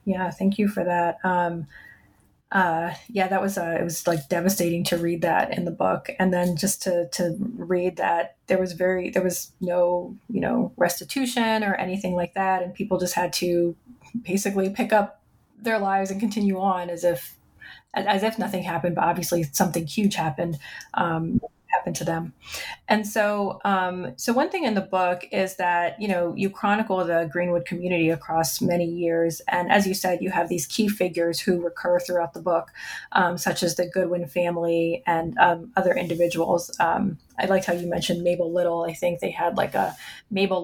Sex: female